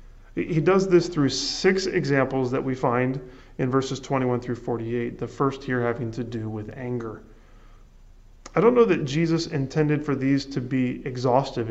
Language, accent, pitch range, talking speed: English, American, 125-150 Hz, 170 wpm